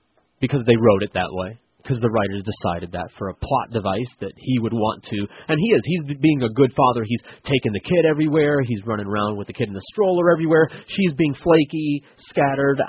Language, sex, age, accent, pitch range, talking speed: English, male, 30-49, American, 115-155 Hz, 220 wpm